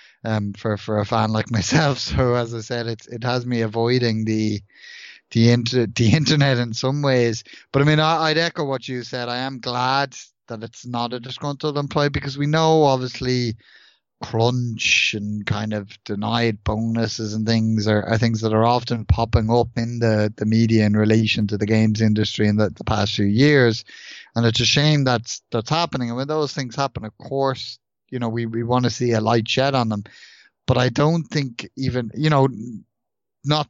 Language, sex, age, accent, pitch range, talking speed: English, male, 30-49, Irish, 110-130 Hz, 200 wpm